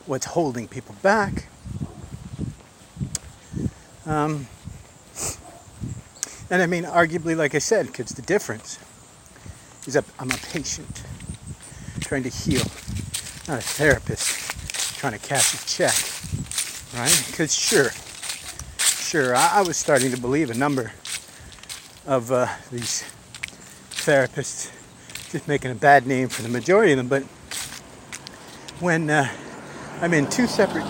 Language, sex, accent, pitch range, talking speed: English, male, American, 120-155 Hz, 125 wpm